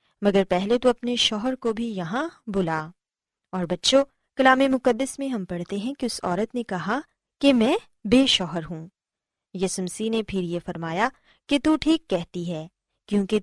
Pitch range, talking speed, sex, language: 185-270 Hz, 175 wpm, female, Urdu